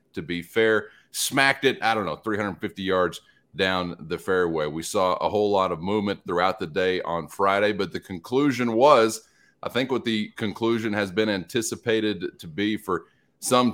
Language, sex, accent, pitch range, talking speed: English, male, American, 100-120 Hz, 180 wpm